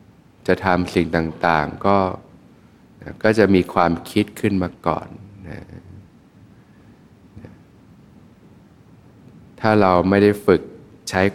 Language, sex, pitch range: Thai, male, 85-100 Hz